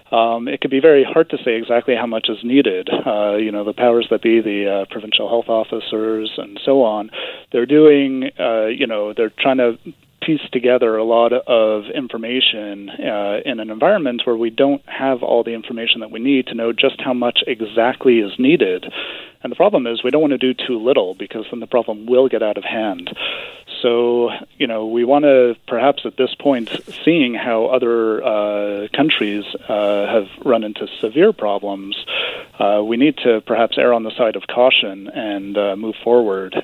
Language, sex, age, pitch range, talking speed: English, male, 30-49, 105-130 Hz, 195 wpm